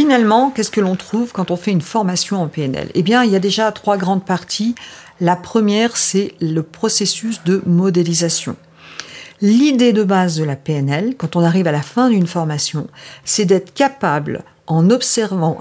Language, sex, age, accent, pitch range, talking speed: French, female, 50-69, French, 170-220 Hz, 180 wpm